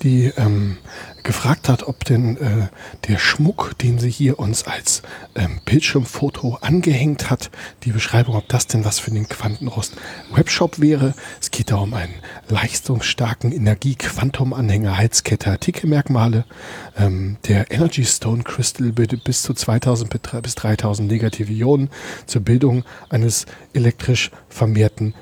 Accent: German